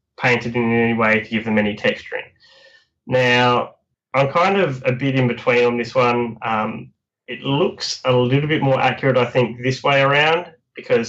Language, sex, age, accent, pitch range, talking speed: English, male, 10-29, Australian, 110-125 Hz, 185 wpm